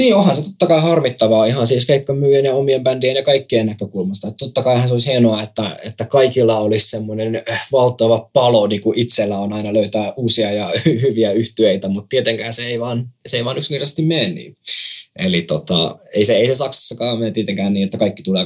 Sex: male